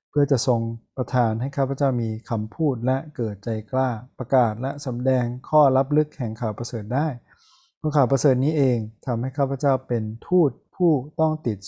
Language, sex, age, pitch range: Thai, male, 20-39, 115-135 Hz